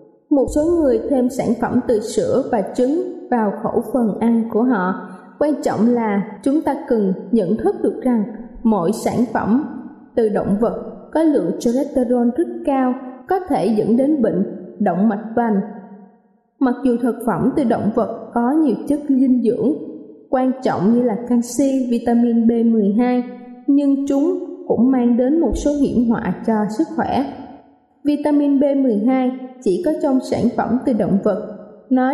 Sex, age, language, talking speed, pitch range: female, 20-39, Vietnamese, 160 wpm, 220-275 Hz